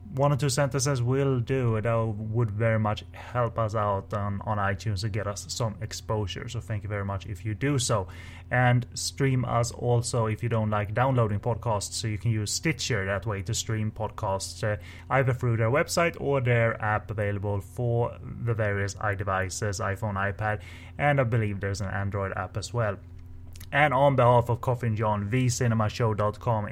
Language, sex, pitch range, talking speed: English, male, 95-120 Hz, 180 wpm